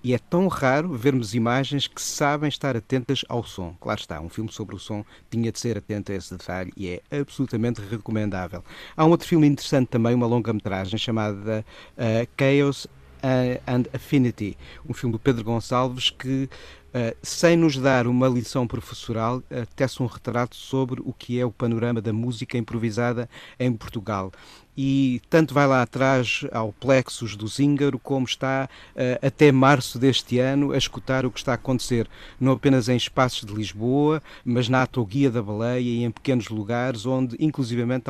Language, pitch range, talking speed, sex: Portuguese, 110-130 Hz, 170 wpm, male